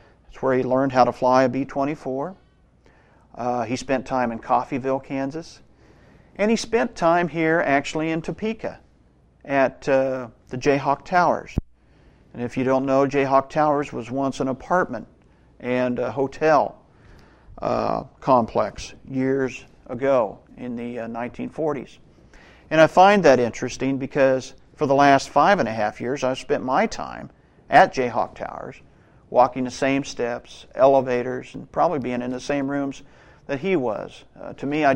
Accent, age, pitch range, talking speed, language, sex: American, 50-69, 120-140 Hz, 155 wpm, English, male